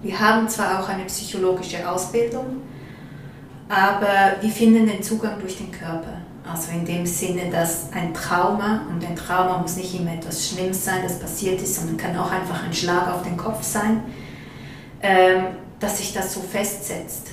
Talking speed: 170 wpm